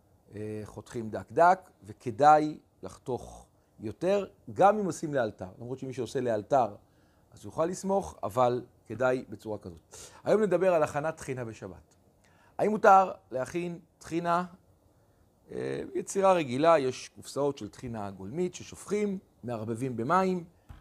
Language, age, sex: Hebrew, 40-59, male